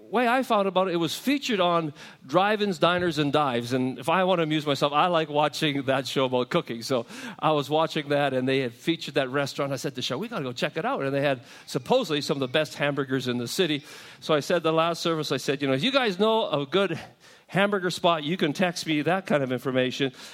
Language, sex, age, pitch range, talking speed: English, male, 40-59, 135-185 Hz, 260 wpm